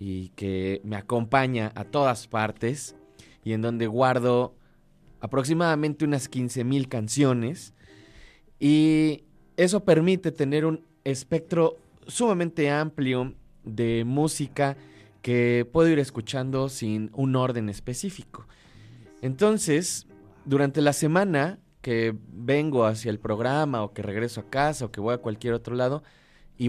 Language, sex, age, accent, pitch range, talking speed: Spanish, male, 20-39, Mexican, 115-145 Hz, 125 wpm